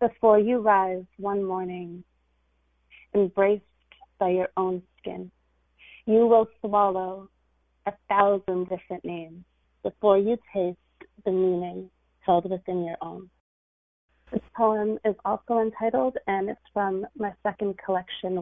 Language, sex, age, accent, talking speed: English, female, 30-49, American, 120 wpm